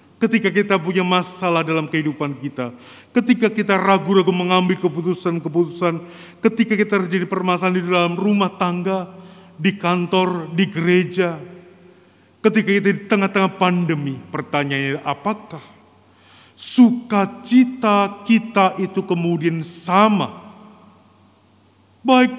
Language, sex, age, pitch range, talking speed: Indonesian, male, 30-49, 125-195 Hz, 100 wpm